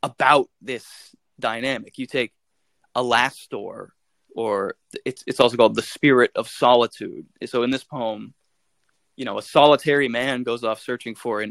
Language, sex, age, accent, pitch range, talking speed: English, male, 20-39, American, 120-145 Hz, 160 wpm